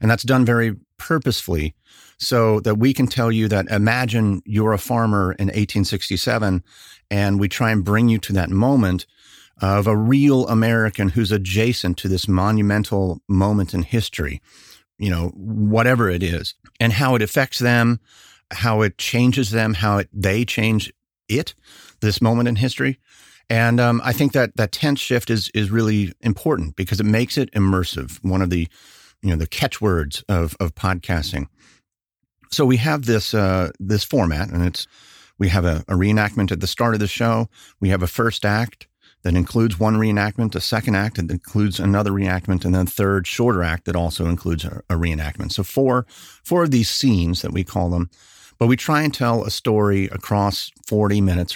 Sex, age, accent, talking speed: male, 40-59, American, 180 wpm